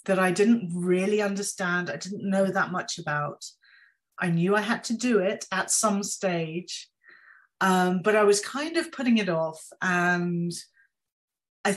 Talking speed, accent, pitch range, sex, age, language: 165 wpm, British, 175-205 Hz, female, 30-49, French